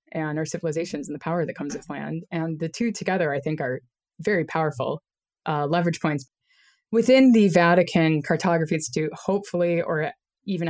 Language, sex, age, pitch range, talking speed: English, female, 20-39, 150-180 Hz, 170 wpm